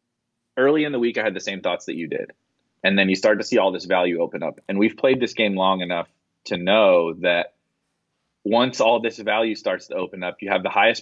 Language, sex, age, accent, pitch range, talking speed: English, male, 30-49, American, 95-120 Hz, 245 wpm